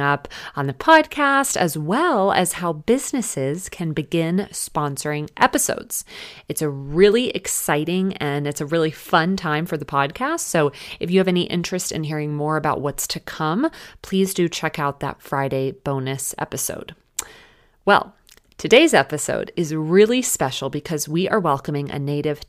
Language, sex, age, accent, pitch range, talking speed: English, female, 30-49, American, 145-210 Hz, 155 wpm